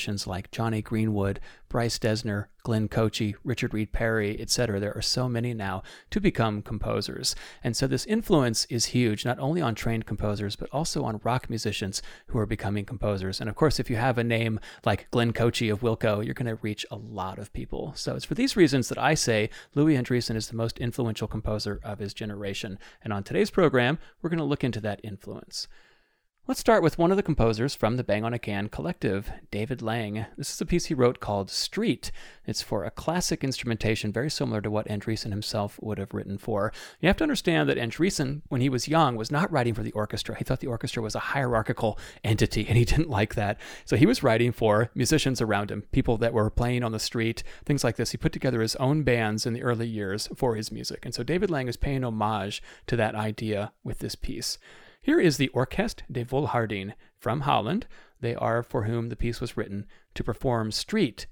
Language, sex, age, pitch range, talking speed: English, male, 30-49, 105-130 Hz, 215 wpm